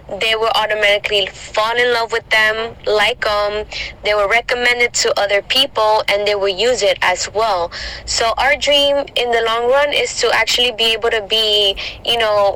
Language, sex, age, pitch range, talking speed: Italian, female, 20-39, 200-235 Hz, 185 wpm